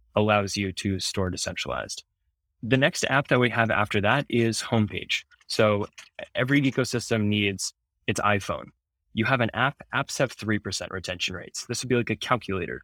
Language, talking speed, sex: English, 170 wpm, male